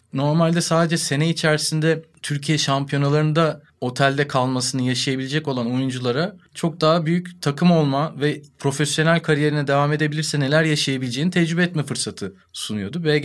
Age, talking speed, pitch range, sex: 30-49, 120 wpm, 125-155 Hz, male